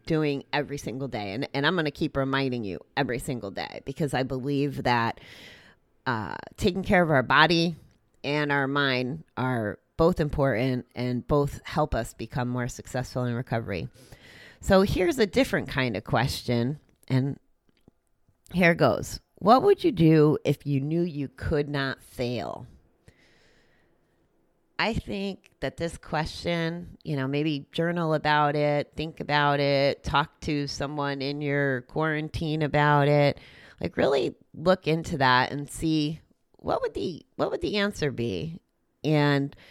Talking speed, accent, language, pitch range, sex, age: 150 wpm, American, English, 130-160 Hz, female, 30-49